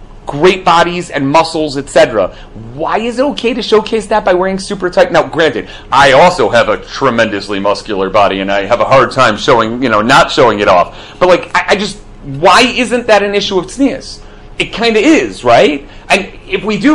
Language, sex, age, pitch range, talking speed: English, male, 30-49, 130-195 Hz, 210 wpm